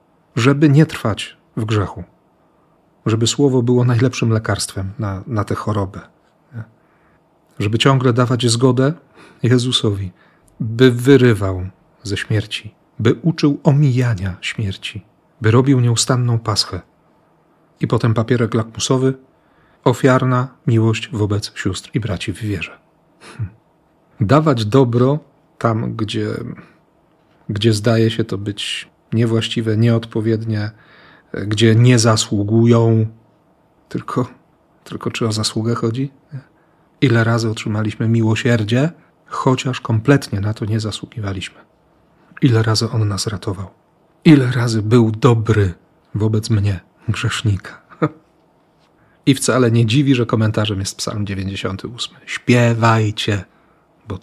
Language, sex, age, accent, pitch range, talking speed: Polish, male, 40-59, native, 110-135 Hz, 105 wpm